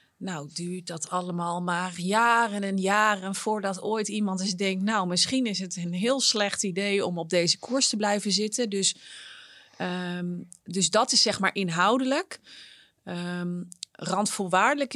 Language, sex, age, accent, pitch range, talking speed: Dutch, female, 30-49, Dutch, 180-215 Hz, 145 wpm